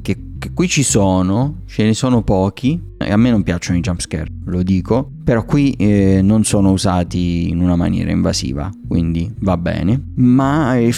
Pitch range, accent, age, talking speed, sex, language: 95-115 Hz, native, 30-49, 180 wpm, male, Italian